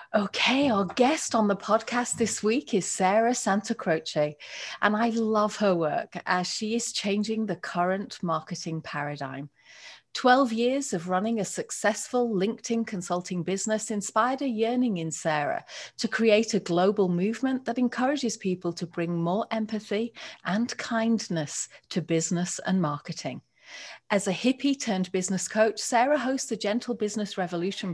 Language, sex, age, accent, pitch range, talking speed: English, female, 40-59, British, 175-235 Hz, 145 wpm